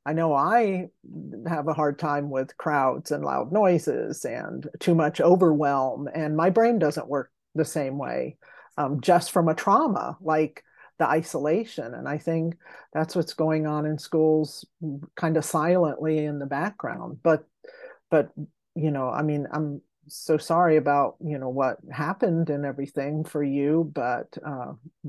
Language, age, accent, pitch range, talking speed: English, 50-69, American, 145-165 Hz, 160 wpm